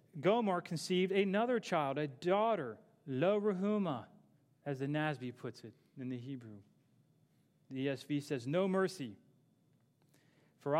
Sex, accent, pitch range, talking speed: male, American, 140-175 Hz, 120 wpm